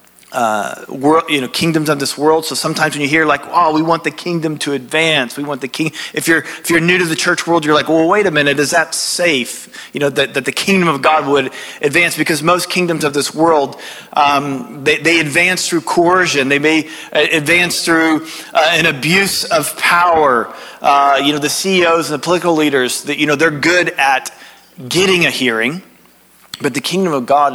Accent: American